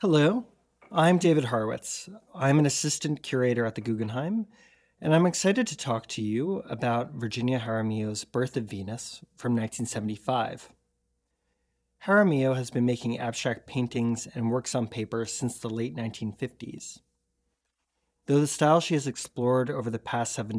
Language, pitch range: English, 110-150 Hz